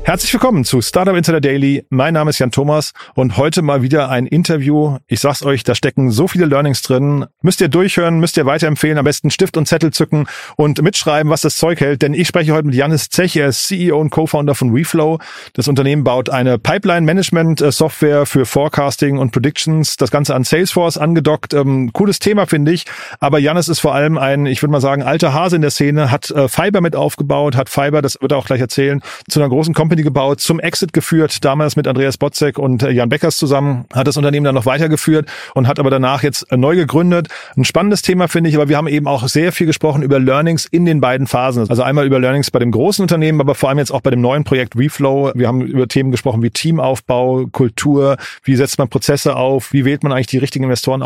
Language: German